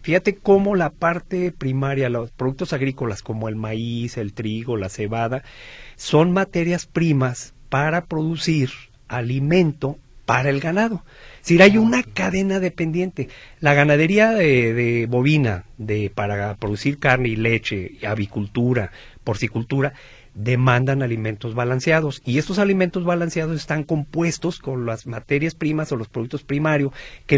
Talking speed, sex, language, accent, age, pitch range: 135 wpm, male, Spanish, Mexican, 40-59, 120-160 Hz